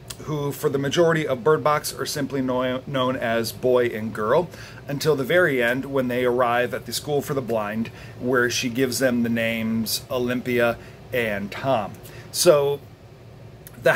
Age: 40-59